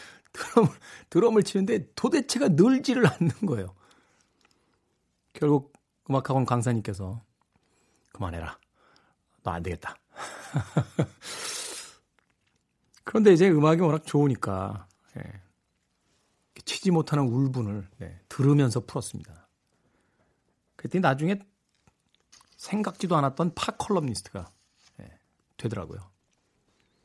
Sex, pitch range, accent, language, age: male, 110-175 Hz, native, Korean, 40-59